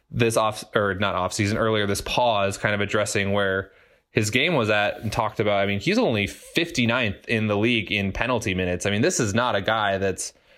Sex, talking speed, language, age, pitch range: male, 220 wpm, English, 20-39, 105-120 Hz